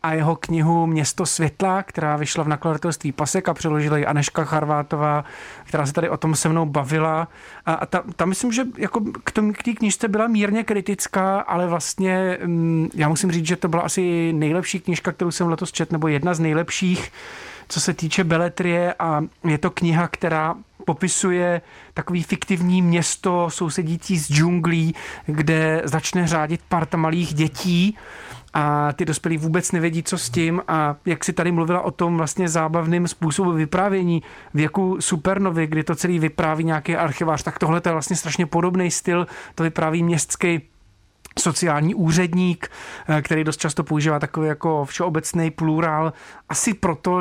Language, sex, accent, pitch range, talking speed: Czech, male, native, 155-180 Hz, 160 wpm